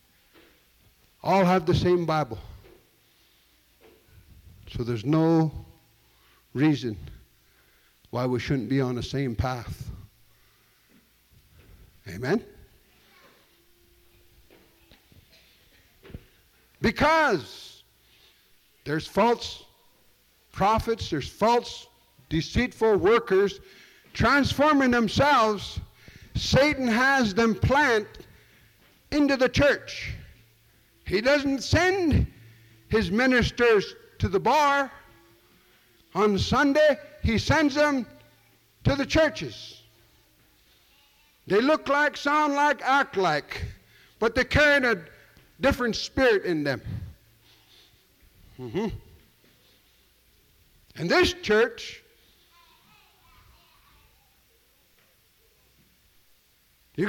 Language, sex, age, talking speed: English, male, 60-79, 75 wpm